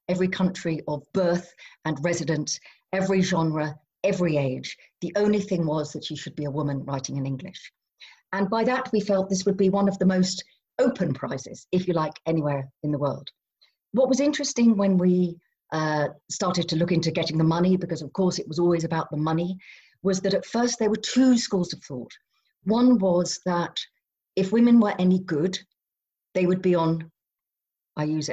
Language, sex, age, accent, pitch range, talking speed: English, female, 50-69, British, 150-185 Hz, 190 wpm